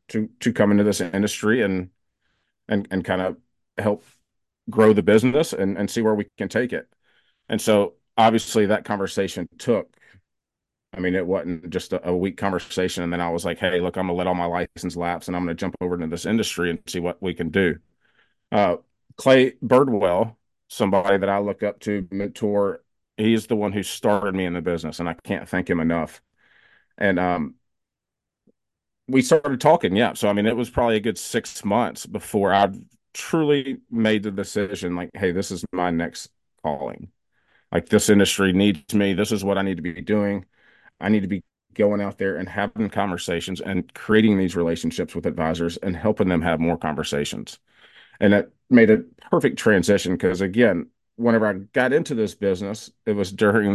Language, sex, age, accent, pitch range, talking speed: English, male, 30-49, American, 90-105 Hz, 195 wpm